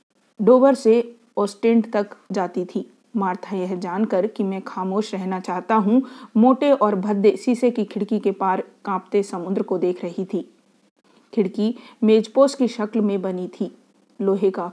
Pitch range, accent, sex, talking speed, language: 195-240 Hz, native, female, 155 wpm, Hindi